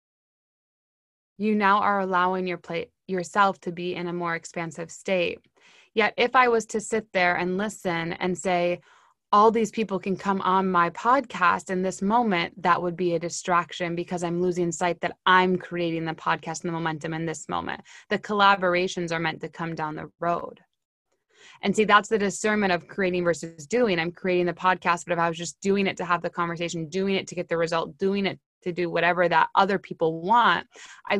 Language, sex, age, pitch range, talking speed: English, female, 20-39, 175-200 Hz, 200 wpm